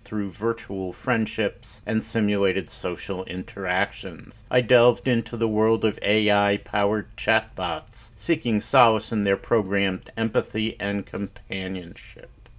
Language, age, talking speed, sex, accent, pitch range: English, 50-69, 110 wpm, male, American, 100-120 Hz